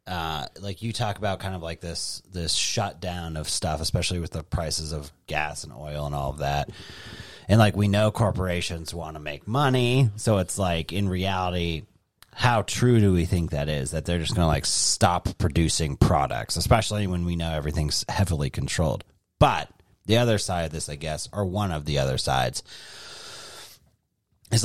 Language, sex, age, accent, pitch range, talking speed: English, male, 30-49, American, 80-105 Hz, 185 wpm